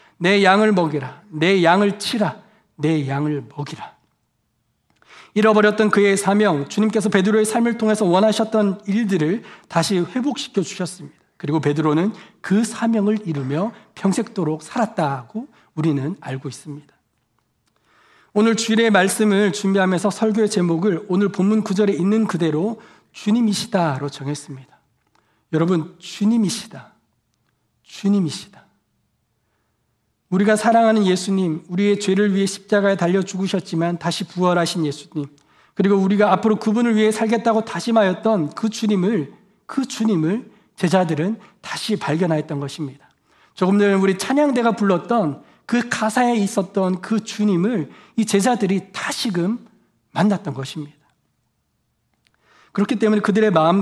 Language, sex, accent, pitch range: Korean, male, native, 160-215 Hz